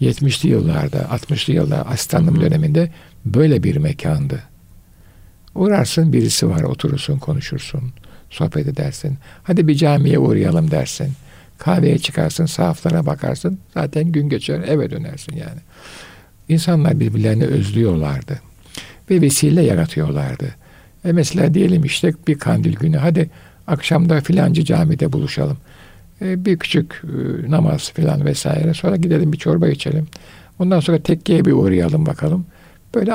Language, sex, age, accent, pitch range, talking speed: Turkish, male, 60-79, native, 140-165 Hz, 120 wpm